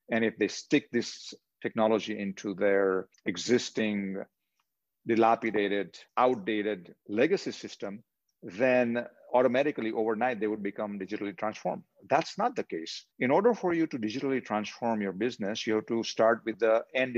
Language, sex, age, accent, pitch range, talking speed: English, male, 50-69, Indian, 105-130 Hz, 145 wpm